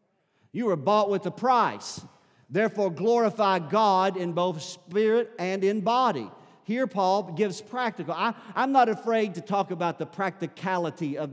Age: 50-69